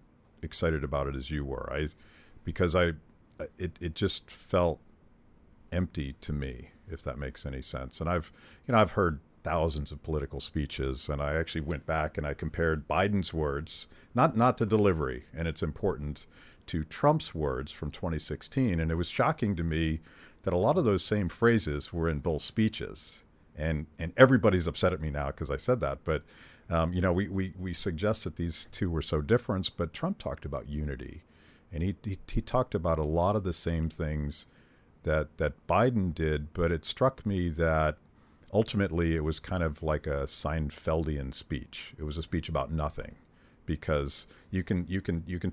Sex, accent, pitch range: male, American, 75-95 Hz